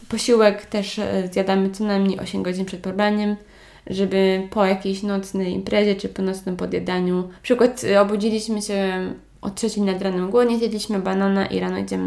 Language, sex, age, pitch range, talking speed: Polish, female, 20-39, 185-220 Hz, 170 wpm